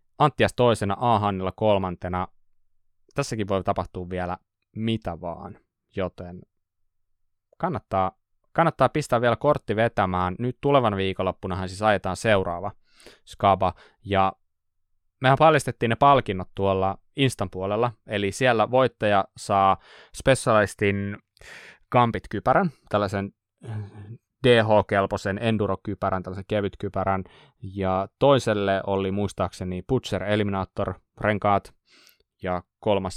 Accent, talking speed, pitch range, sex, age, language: native, 95 wpm, 95-110 Hz, male, 20-39, Finnish